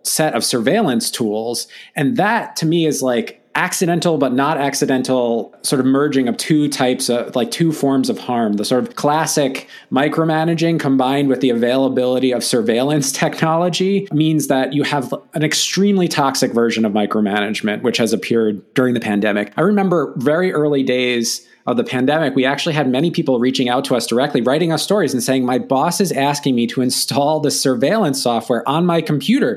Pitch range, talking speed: 125-160 Hz, 185 wpm